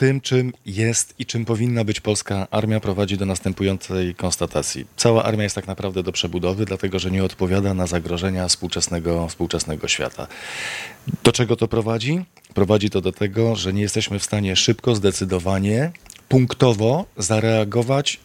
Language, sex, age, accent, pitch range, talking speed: Polish, male, 40-59, native, 100-125 Hz, 150 wpm